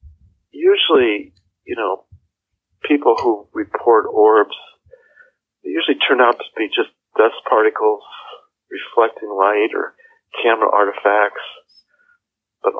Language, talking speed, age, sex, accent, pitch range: English, 105 wpm, 50-69, male, American, 280-445 Hz